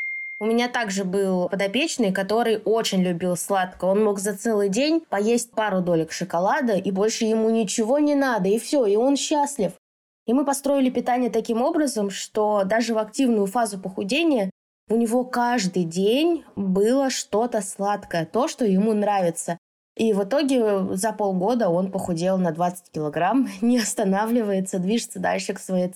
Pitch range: 195-235 Hz